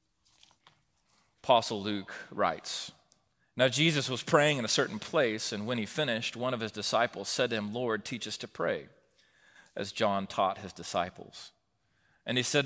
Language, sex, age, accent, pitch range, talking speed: English, male, 30-49, American, 110-150 Hz, 165 wpm